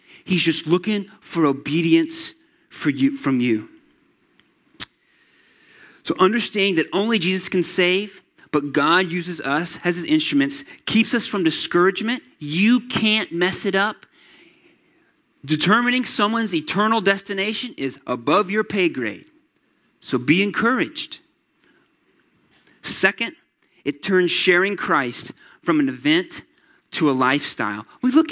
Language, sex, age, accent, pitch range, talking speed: English, male, 30-49, American, 180-275 Hz, 120 wpm